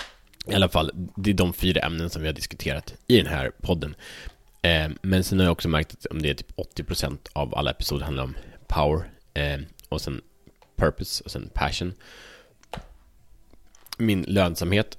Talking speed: 170 wpm